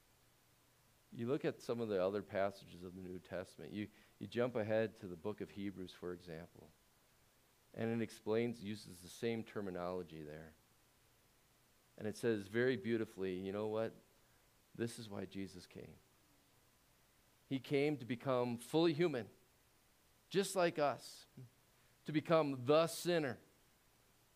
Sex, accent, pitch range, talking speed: male, American, 95-125 Hz, 140 wpm